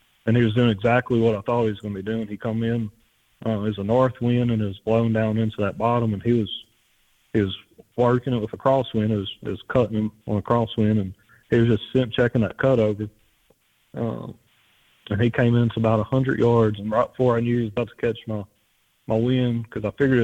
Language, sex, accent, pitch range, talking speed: English, male, American, 105-120 Hz, 250 wpm